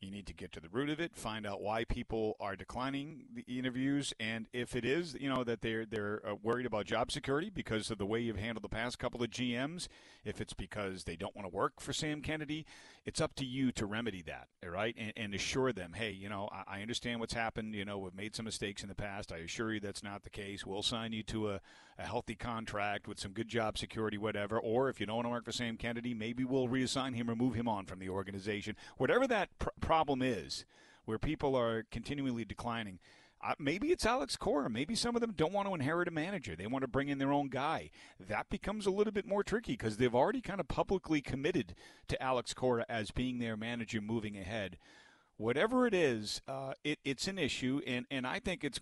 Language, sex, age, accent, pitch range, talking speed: English, male, 40-59, American, 105-135 Hz, 235 wpm